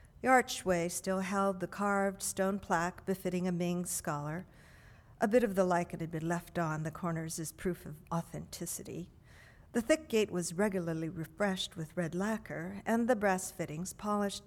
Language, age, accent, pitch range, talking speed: English, 50-69, American, 165-200 Hz, 170 wpm